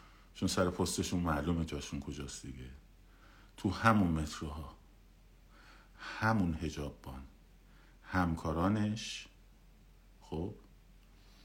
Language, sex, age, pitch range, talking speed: Persian, male, 50-69, 80-100 Hz, 80 wpm